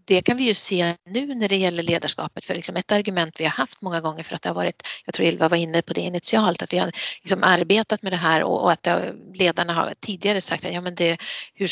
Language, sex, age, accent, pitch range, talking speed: Swedish, female, 40-59, native, 170-210 Hz, 250 wpm